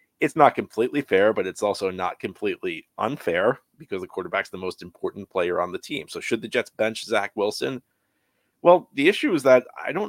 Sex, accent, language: male, American, English